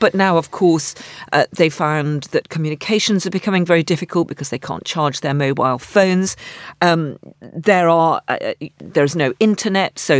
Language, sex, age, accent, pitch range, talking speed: English, female, 40-59, British, 145-175 Hz, 170 wpm